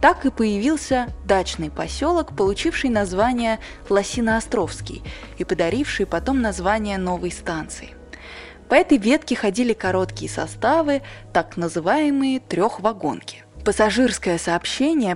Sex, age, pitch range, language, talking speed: female, 20-39, 185-255 Hz, Russian, 100 wpm